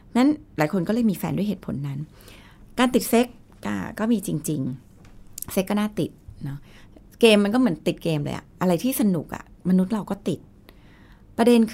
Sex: female